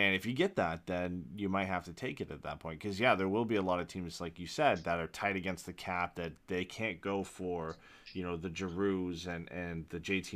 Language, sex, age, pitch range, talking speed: English, male, 20-39, 80-90 Hz, 265 wpm